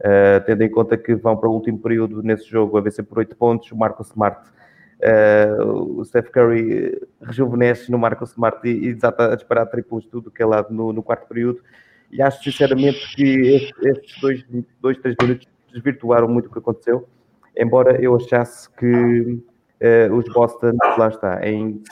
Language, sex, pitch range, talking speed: Portuguese, male, 110-125 Hz, 185 wpm